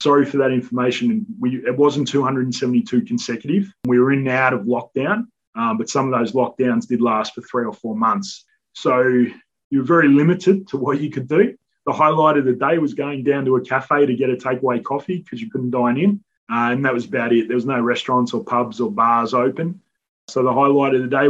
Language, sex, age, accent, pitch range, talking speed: English, male, 20-39, Australian, 125-150 Hz, 230 wpm